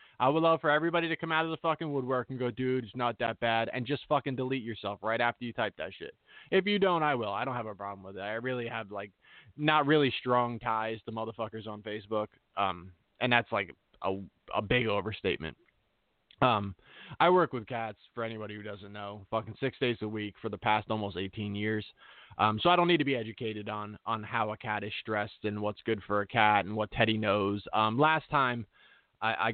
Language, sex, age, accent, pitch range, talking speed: English, male, 20-39, American, 105-125 Hz, 230 wpm